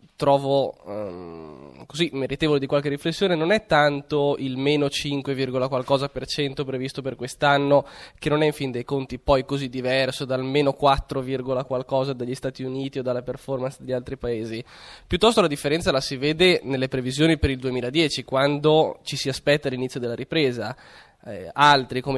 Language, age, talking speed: Italian, 20-39, 170 wpm